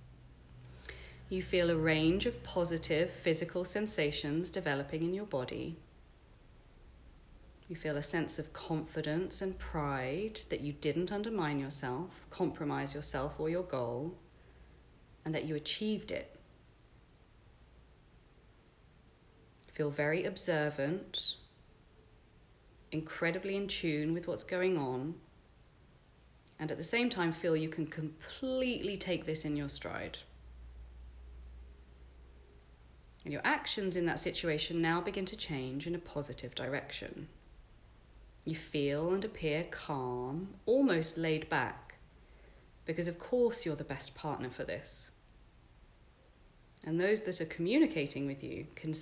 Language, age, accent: English, 40-59, British